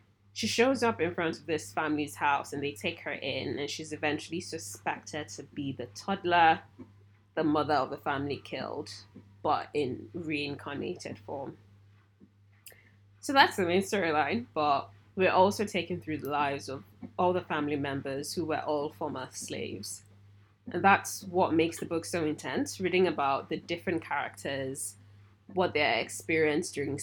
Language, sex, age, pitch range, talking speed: English, female, 20-39, 105-165 Hz, 160 wpm